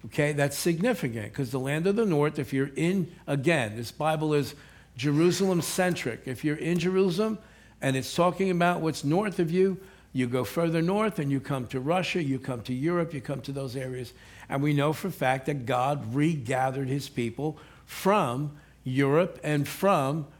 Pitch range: 135-175 Hz